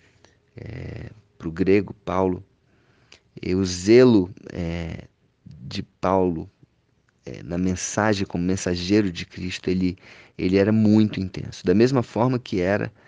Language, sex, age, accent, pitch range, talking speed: Portuguese, male, 30-49, Brazilian, 85-100 Hz, 130 wpm